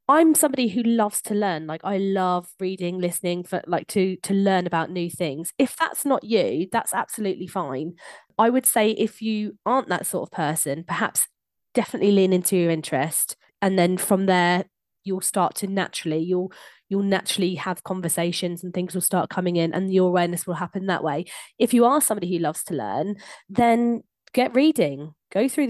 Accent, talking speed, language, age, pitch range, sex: British, 190 wpm, English, 20-39, 180-220 Hz, female